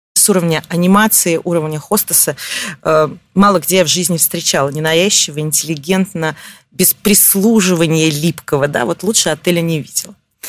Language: Russian